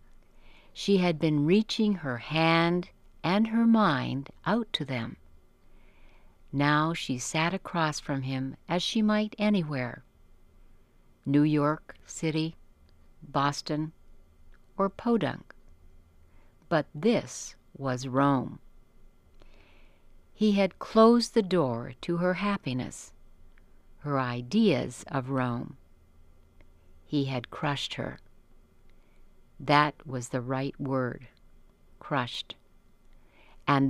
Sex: female